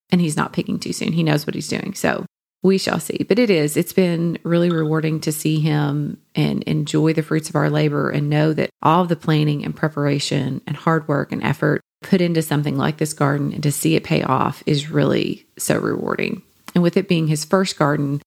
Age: 30-49